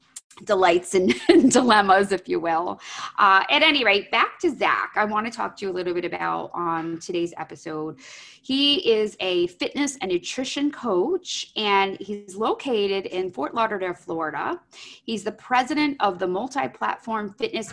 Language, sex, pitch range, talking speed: English, female, 170-230 Hz, 160 wpm